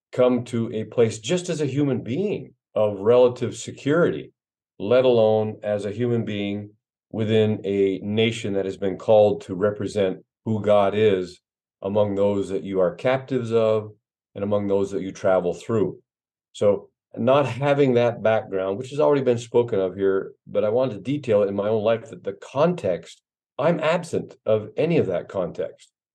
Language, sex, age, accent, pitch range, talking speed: English, male, 40-59, American, 100-125 Hz, 170 wpm